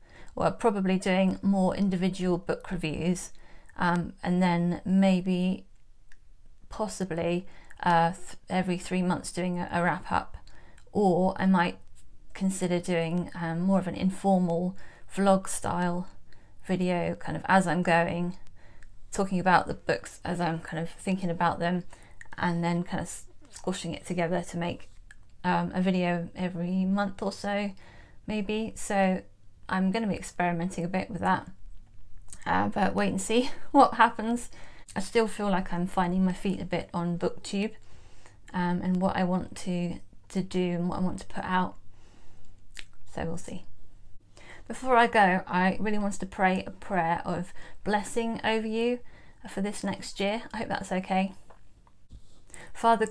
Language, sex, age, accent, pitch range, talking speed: English, female, 30-49, British, 170-195 Hz, 155 wpm